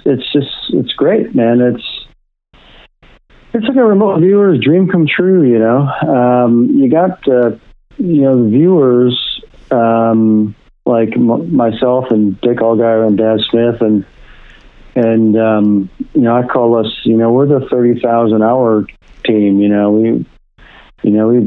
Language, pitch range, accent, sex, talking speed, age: English, 105-125 Hz, American, male, 155 wpm, 50-69